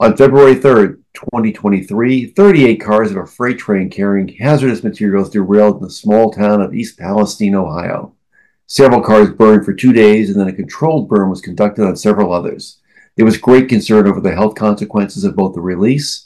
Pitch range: 110-135 Hz